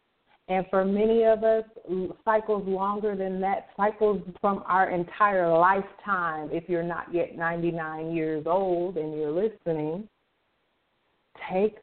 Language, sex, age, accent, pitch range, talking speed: English, female, 40-59, American, 165-220 Hz, 125 wpm